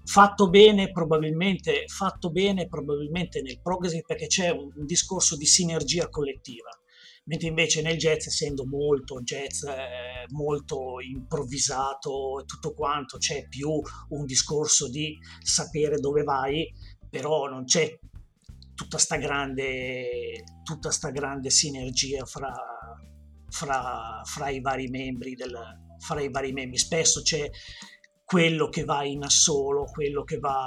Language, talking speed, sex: Italian, 130 wpm, male